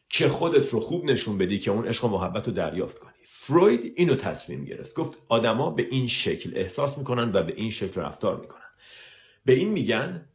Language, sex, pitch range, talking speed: Persian, male, 100-135 Hz, 190 wpm